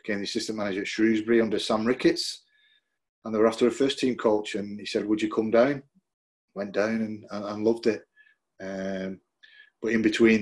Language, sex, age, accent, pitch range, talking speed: English, male, 30-49, British, 100-115 Hz, 200 wpm